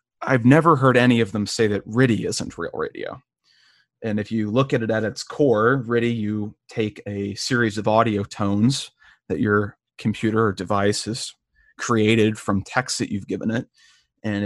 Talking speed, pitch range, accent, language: 180 wpm, 105-120 Hz, American, English